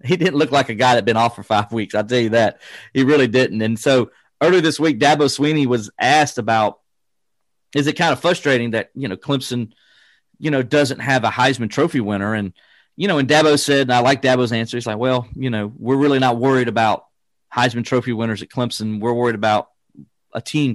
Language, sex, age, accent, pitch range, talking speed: English, male, 40-59, American, 110-135 Hz, 225 wpm